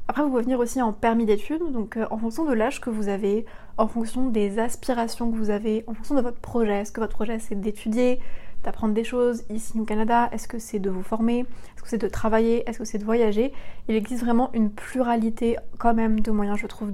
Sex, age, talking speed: female, 20-39, 235 wpm